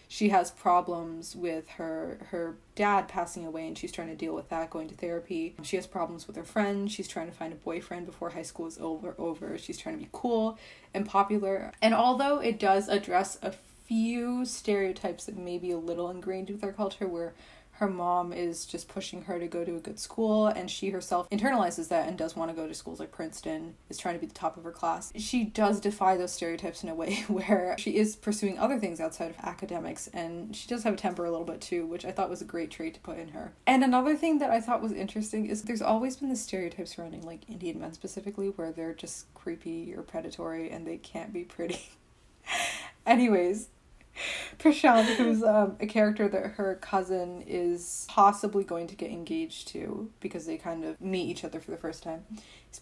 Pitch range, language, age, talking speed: 170-210 Hz, English, 20-39, 220 wpm